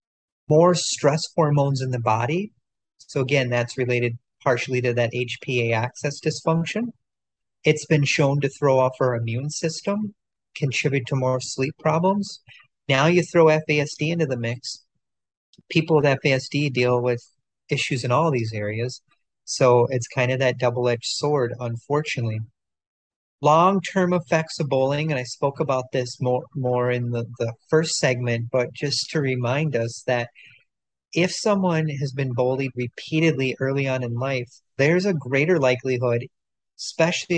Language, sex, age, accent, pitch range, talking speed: English, male, 40-59, American, 125-155 Hz, 150 wpm